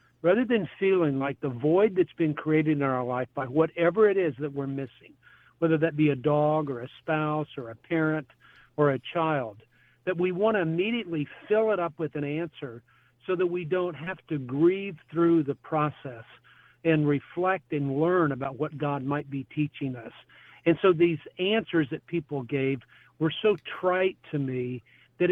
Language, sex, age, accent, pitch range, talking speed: English, male, 50-69, American, 135-175 Hz, 185 wpm